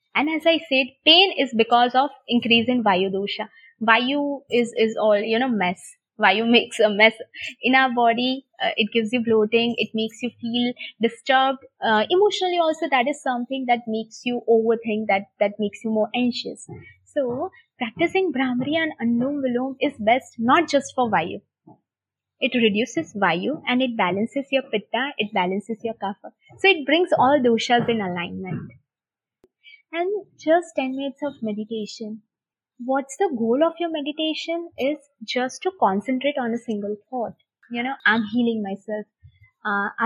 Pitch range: 220-290 Hz